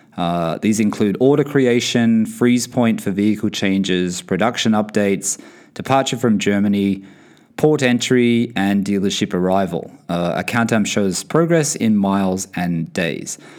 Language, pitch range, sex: English, 100-130 Hz, male